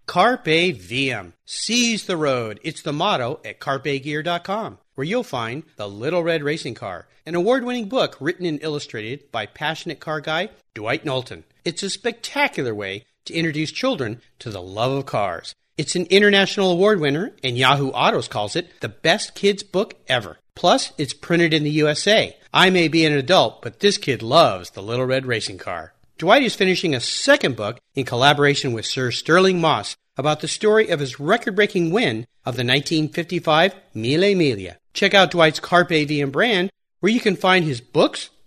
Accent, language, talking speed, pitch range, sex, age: American, English, 175 wpm, 135-190 Hz, male, 40-59